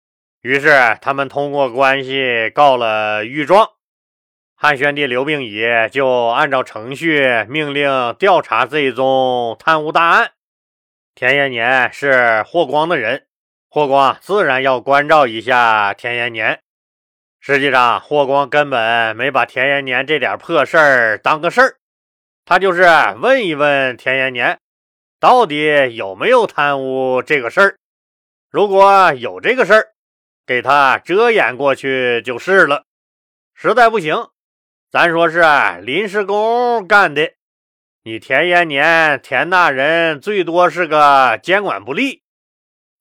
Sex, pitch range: male, 120-165 Hz